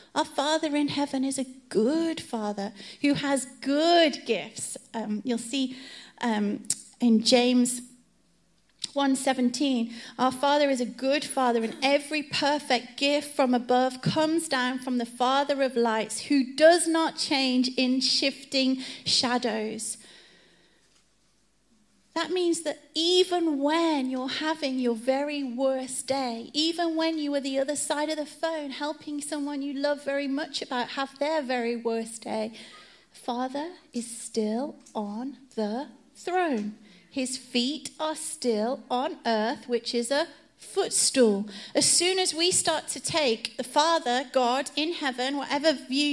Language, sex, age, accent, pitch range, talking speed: English, female, 30-49, British, 250-295 Hz, 140 wpm